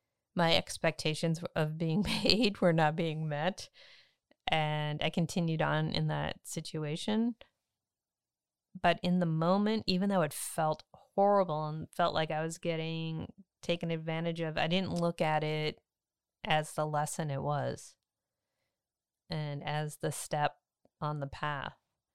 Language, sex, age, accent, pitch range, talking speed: English, female, 30-49, American, 145-175 Hz, 140 wpm